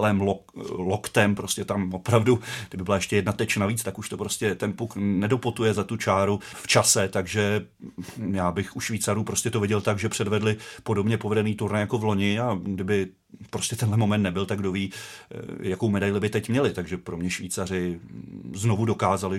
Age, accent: 30-49, native